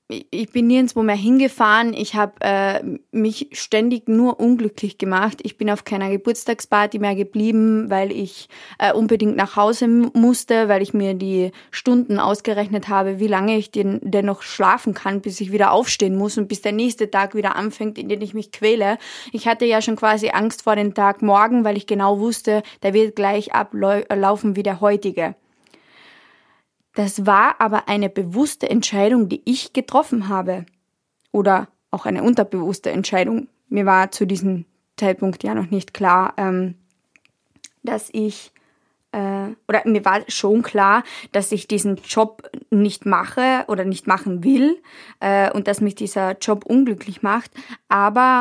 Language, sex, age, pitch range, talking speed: German, female, 20-39, 200-225 Hz, 160 wpm